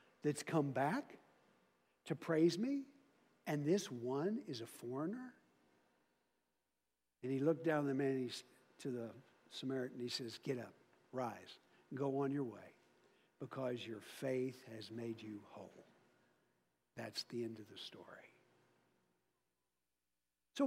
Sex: male